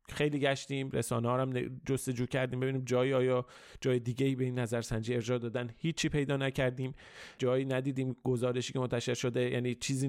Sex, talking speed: male, 165 wpm